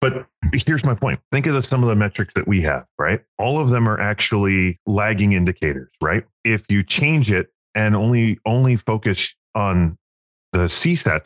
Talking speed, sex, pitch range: 180 wpm, male, 90-115 Hz